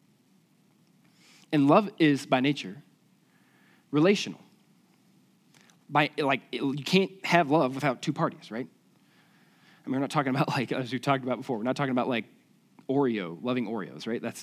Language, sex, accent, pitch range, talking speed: English, male, American, 130-185 Hz, 155 wpm